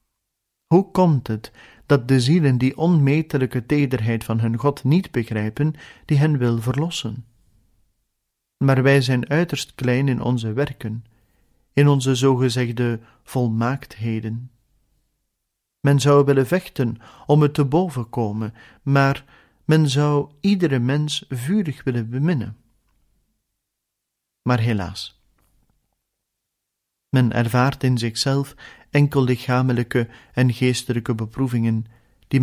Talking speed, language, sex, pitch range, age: 105 wpm, Dutch, male, 115-140 Hz, 40-59